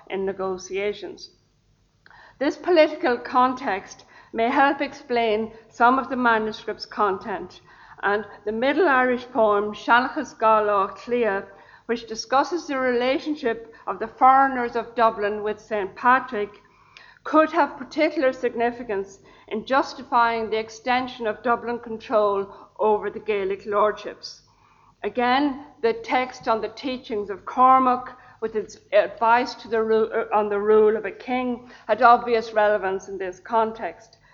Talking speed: 125 wpm